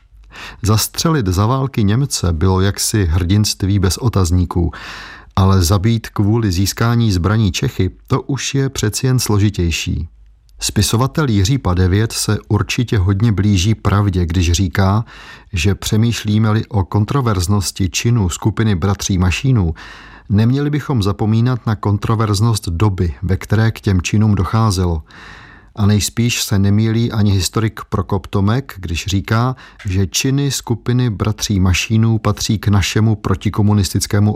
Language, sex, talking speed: Czech, male, 120 wpm